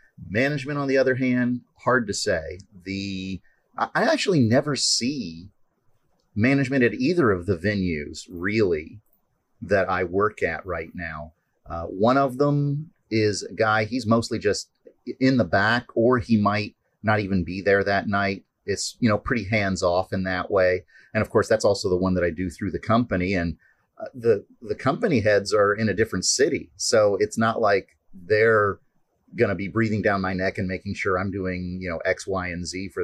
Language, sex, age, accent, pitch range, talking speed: English, male, 30-49, American, 95-120 Hz, 190 wpm